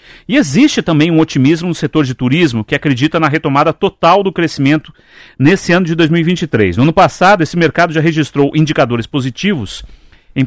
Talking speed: 170 wpm